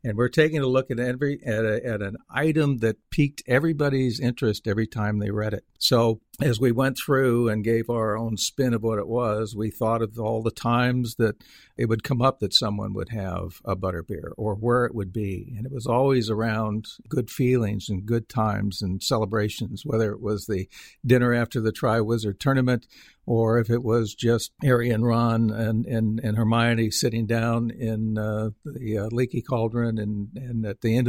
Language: English